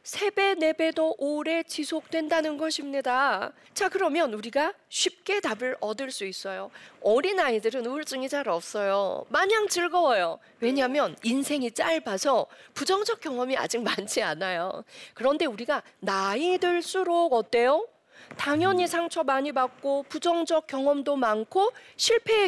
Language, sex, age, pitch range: Korean, female, 40-59, 255-340 Hz